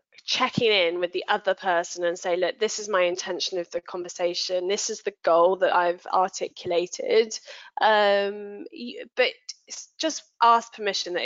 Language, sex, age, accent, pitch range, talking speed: English, female, 10-29, British, 180-255 Hz, 155 wpm